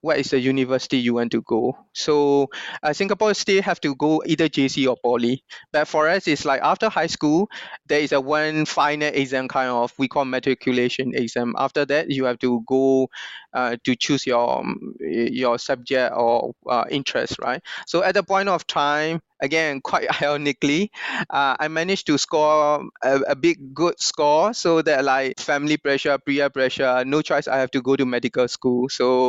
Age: 20-39